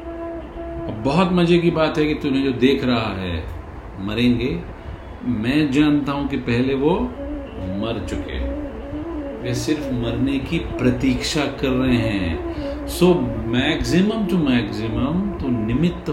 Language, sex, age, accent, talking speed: Hindi, male, 50-69, native, 130 wpm